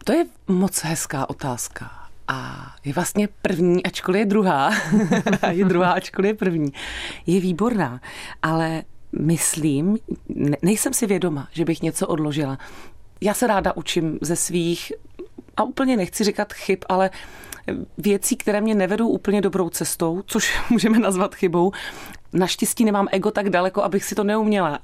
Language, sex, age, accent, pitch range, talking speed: Czech, female, 30-49, native, 170-215 Hz, 145 wpm